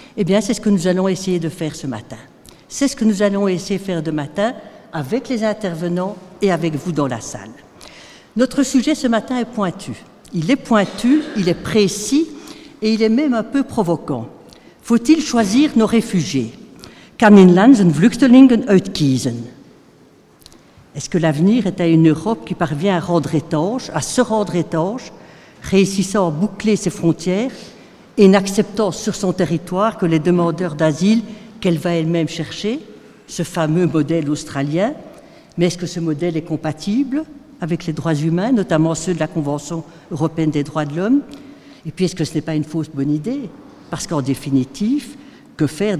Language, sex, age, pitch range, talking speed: French, female, 60-79, 160-220 Hz, 170 wpm